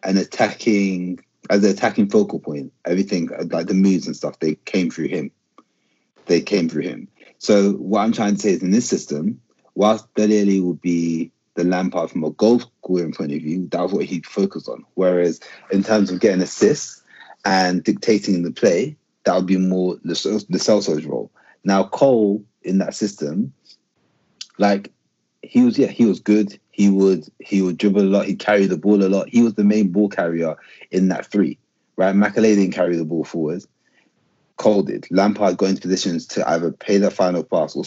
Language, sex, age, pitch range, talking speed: English, male, 30-49, 90-105 Hz, 190 wpm